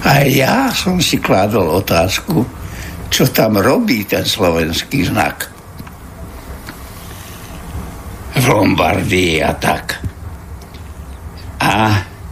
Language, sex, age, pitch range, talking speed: Slovak, male, 60-79, 85-120 Hz, 85 wpm